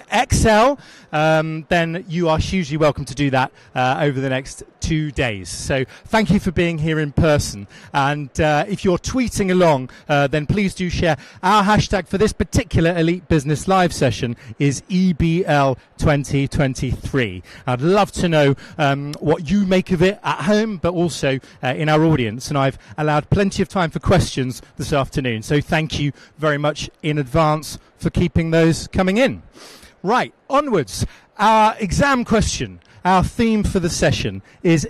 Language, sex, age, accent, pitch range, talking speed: English, male, 30-49, British, 140-190 Hz, 170 wpm